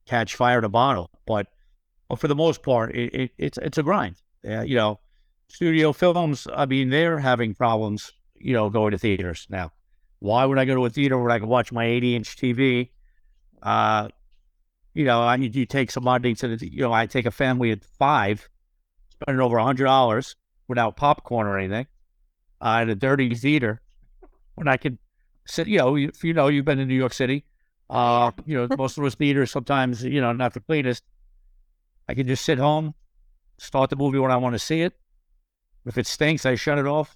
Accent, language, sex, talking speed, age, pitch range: American, English, male, 210 wpm, 60-79, 115-140 Hz